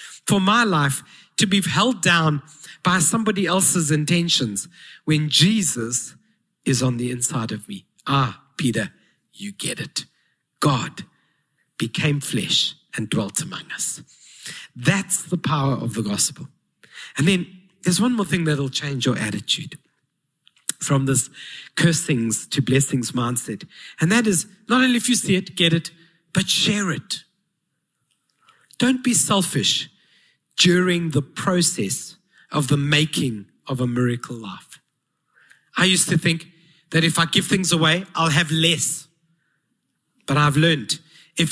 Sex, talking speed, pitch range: male, 140 wpm, 145-195 Hz